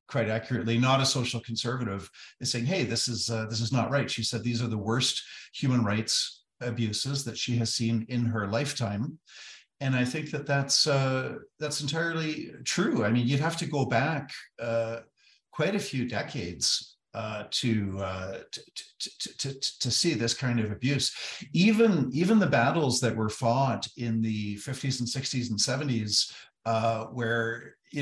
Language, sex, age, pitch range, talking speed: English, male, 50-69, 115-135 Hz, 175 wpm